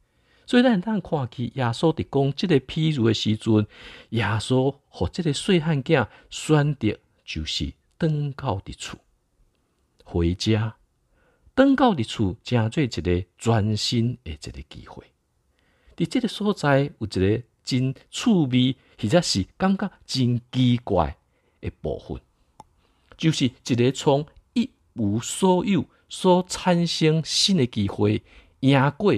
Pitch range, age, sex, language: 85-140 Hz, 50-69, male, Chinese